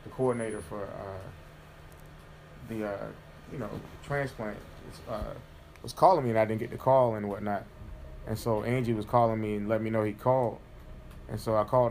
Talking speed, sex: 190 wpm, male